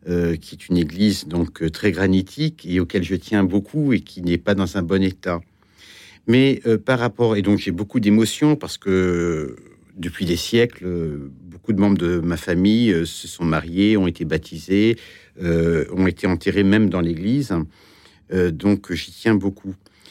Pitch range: 90-110 Hz